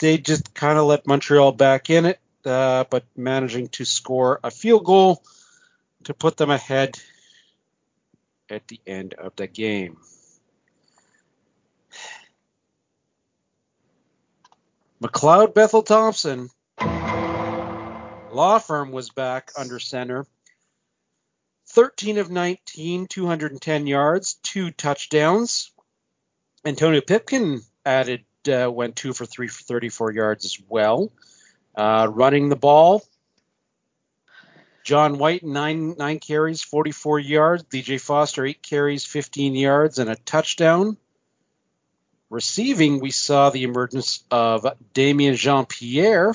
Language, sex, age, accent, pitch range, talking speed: English, male, 40-59, American, 120-155 Hz, 110 wpm